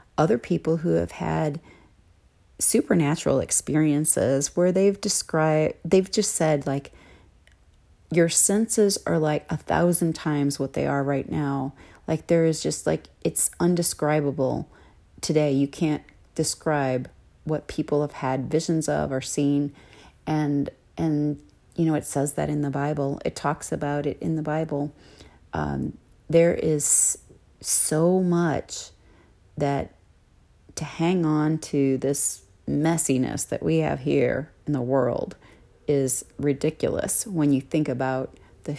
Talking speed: 135 wpm